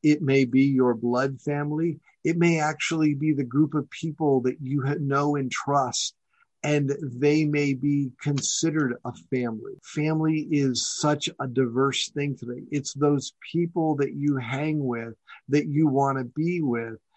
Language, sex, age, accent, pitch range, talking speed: English, male, 50-69, American, 135-155 Hz, 165 wpm